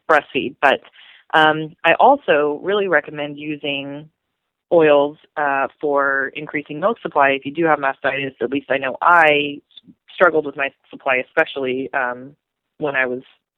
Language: English